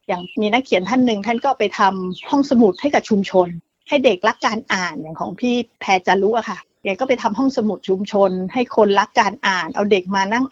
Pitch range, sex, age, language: 200-245 Hz, female, 30-49, Thai